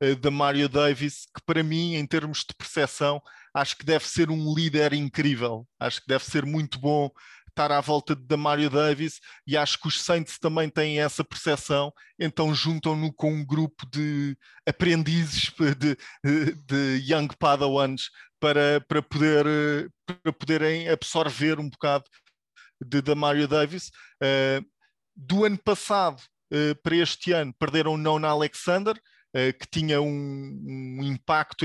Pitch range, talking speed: 140-155 Hz, 150 wpm